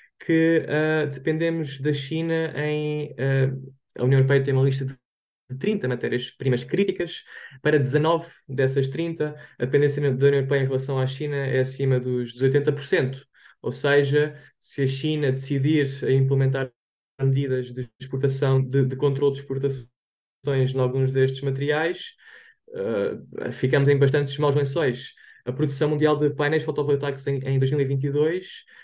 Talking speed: 140 wpm